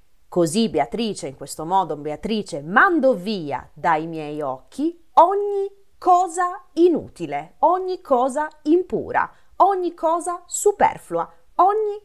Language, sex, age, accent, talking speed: Italian, female, 30-49, native, 105 wpm